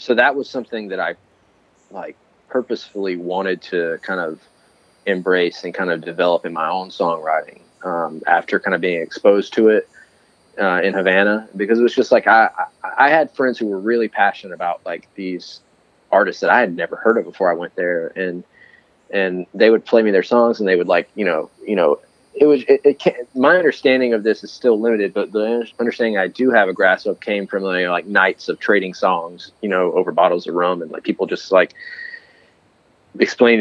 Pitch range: 95-130 Hz